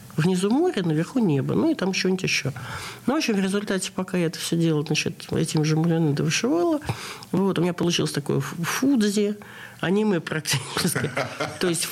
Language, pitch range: Russian, 160-205 Hz